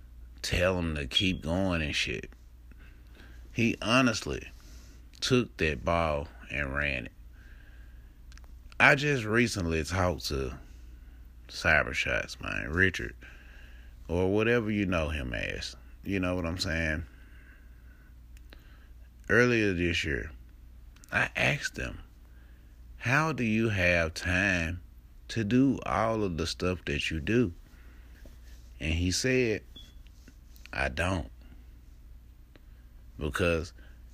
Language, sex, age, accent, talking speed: English, male, 30-49, American, 105 wpm